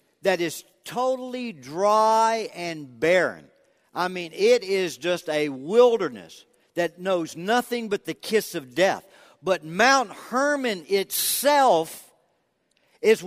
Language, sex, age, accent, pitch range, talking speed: English, male, 50-69, American, 170-240 Hz, 120 wpm